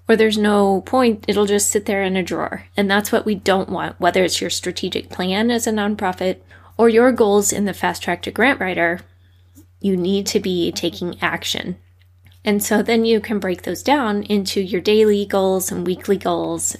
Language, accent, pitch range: English, American, 175-220 Hz